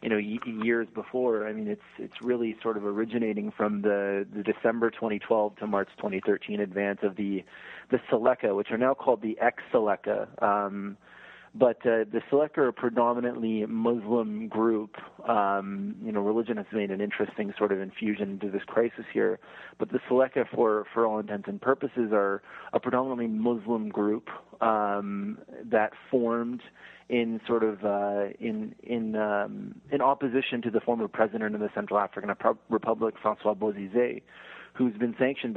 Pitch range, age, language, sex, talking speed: 100-115 Hz, 30-49, English, male, 165 wpm